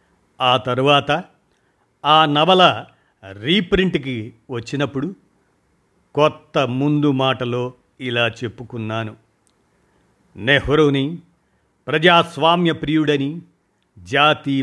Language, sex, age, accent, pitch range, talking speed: Telugu, male, 50-69, native, 125-160 Hz, 60 wpm